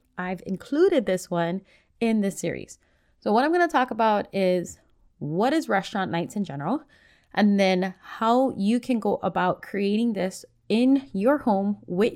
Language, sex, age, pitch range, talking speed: English, female, 20-39, 180-235 Hz, 165 wpm